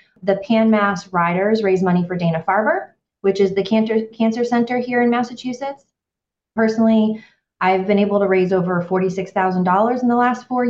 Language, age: English, 30-49